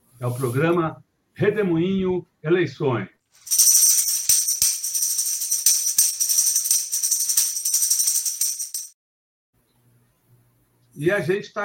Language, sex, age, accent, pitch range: Portuguese, male, 60-79, Brazilian, 125-165 Hz